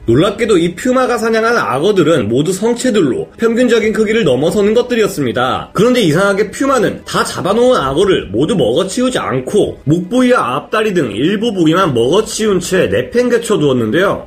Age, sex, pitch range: 30-49, male, 175-230 Hz